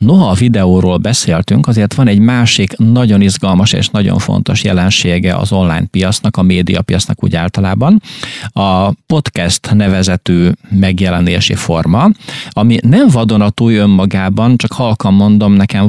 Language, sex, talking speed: Hungarian, male, 130 wpm